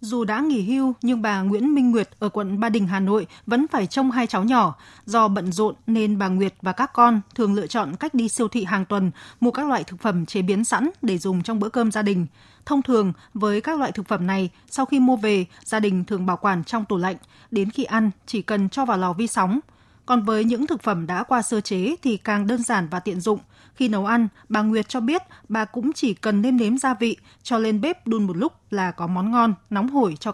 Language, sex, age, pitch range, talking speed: Vietnamese, female, 20-39, 190-235 Hz, 255 wpm